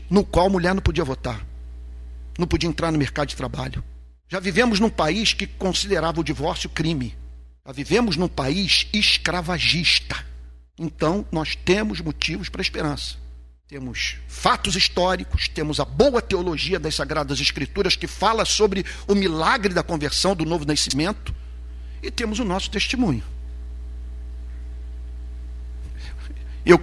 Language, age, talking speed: Portuguese, 50-69, 135 wpm